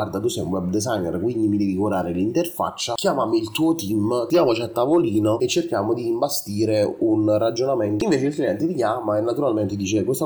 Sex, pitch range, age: male, 105-135 Hz, 30-49